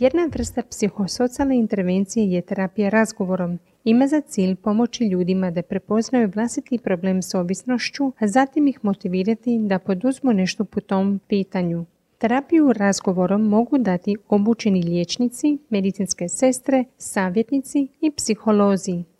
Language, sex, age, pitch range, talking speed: Croatian, female, 30-49, 190-245 Hz, 120 wpm